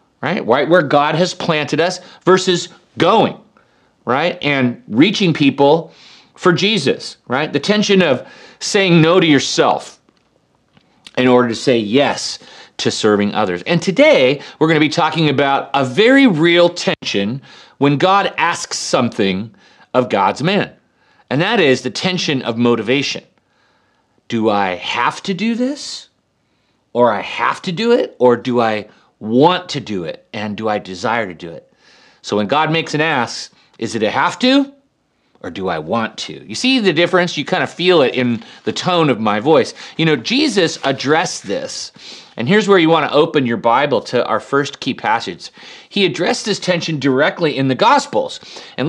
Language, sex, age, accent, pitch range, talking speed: English, male, 40-59, American, 130-185 Hz, 175 wpm